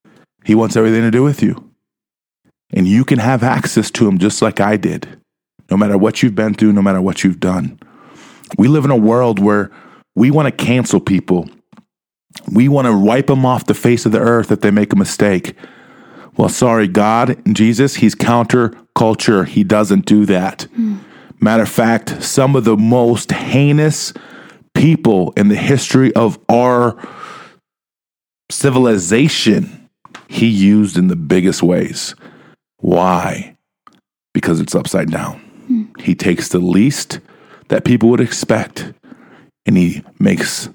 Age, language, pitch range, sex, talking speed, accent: 30-49, English, 100-125 Hz, male, 155 wpm, American